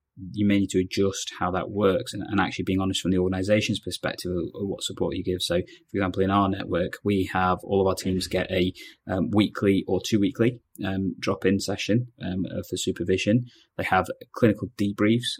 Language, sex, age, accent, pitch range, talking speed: English, male, 20-39, British, 95-110 Hz, 190 wpm